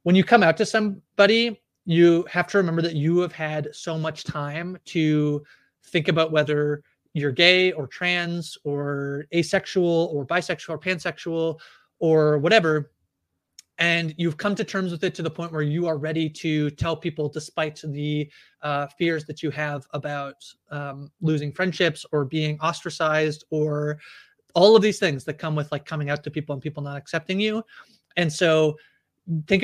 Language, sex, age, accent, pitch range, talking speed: English, male, 30-49, American, 150-175 Hz, 170 wpm